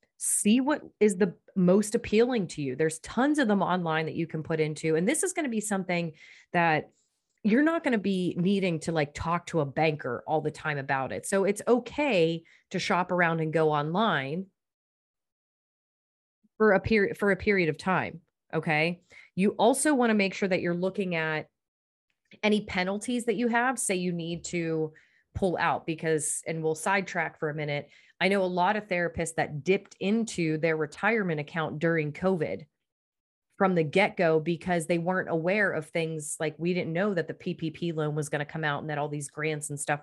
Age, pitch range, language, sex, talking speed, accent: 30-49, 155-195 Hz, English, female, 200 wpm, American